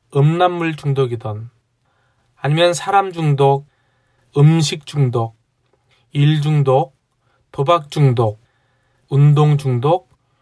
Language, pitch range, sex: Korean, 125-155 Hz, male